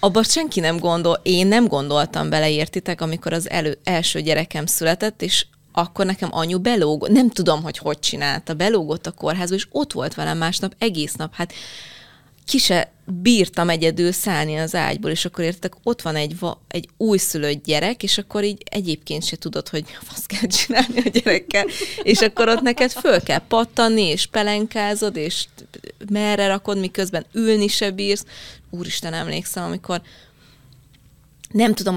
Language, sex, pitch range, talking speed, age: Hungarian, female, 170-220 Hz, 155 wpm, 30-49